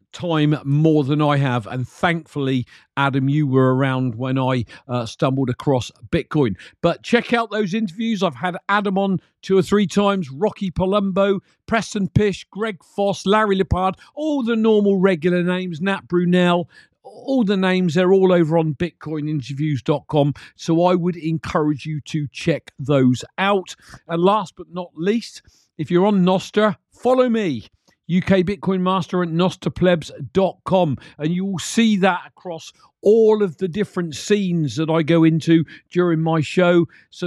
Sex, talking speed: male, 155 wpm